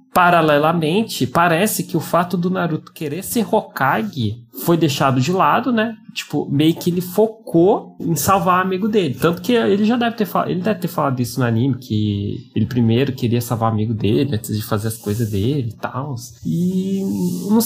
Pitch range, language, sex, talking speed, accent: 120-190 Hz, Portuguese, male, 190 wpm, Brazilian